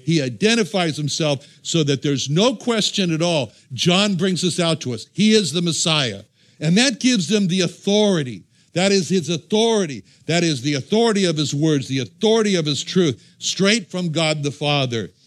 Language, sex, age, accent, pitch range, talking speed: English, male, 60-79, American, 150-200 Hz, 185 wpm